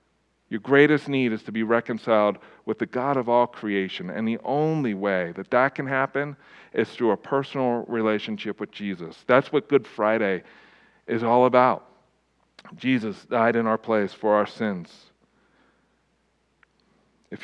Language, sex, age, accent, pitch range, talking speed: English, male, 50-69, American, 110-140 Hz, 150 wpm